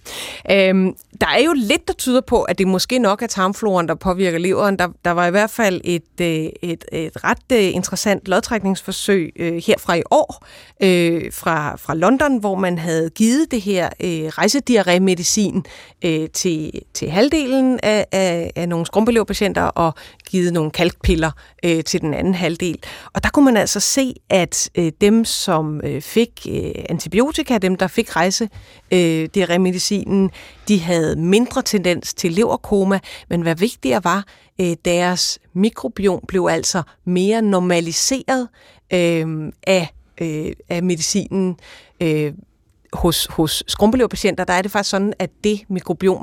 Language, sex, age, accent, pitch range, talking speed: Danish, female, 30-49, native, 175-215 Hz, 145 wpm